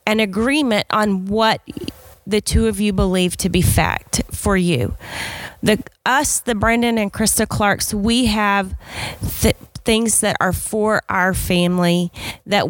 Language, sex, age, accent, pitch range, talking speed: English, female, 30-49, American, 185-225 Hz, 145 wpm